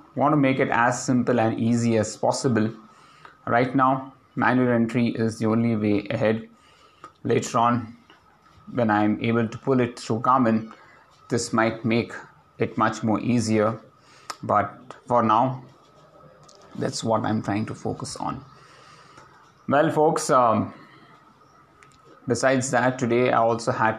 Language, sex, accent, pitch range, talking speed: English, male, Indian, 105-125 Hz, 140 wpm